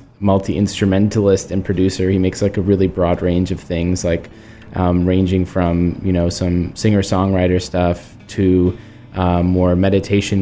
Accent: American